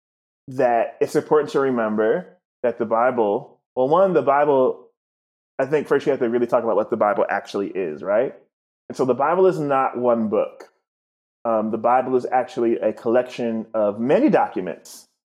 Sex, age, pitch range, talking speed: male, 20-39, 115-140 Hz, 175 wpm